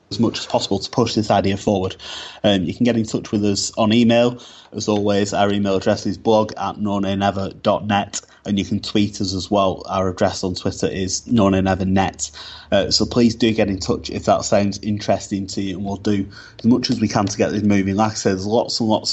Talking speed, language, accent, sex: 225 wpm, English, British, male